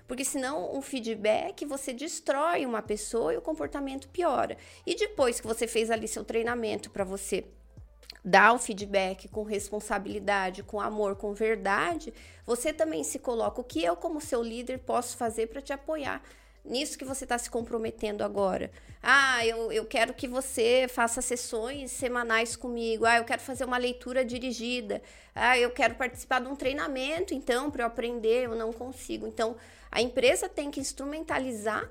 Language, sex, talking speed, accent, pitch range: Portuguese, female, 170 wpm, Brazilian, 225-275 Hz